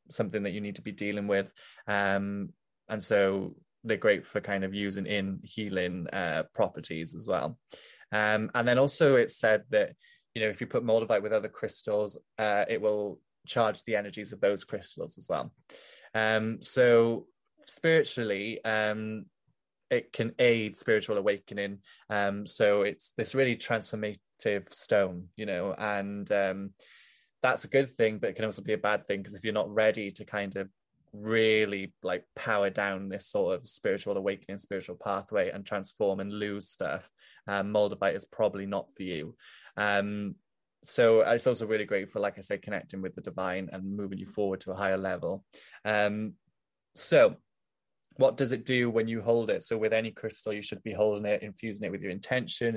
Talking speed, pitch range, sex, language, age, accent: 185 wpm, 100-115 Hz, male, English, 20-39, British